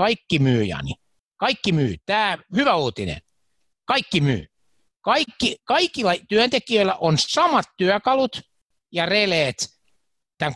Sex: male